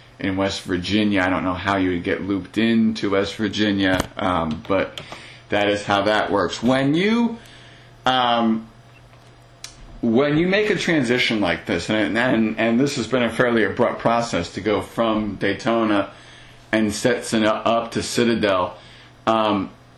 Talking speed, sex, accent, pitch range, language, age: 155 wpm, male, American, 105-135 Hz, English, 40-59